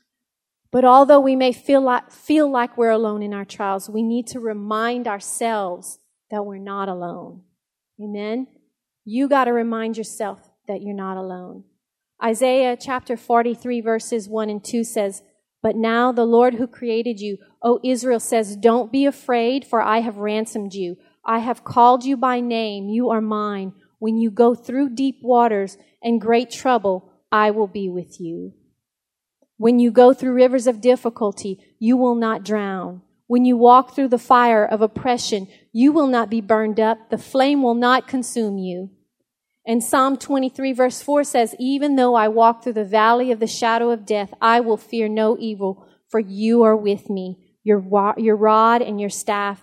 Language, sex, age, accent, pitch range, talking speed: English, female, 30-49, American, 210-245 Hz, 175 wpm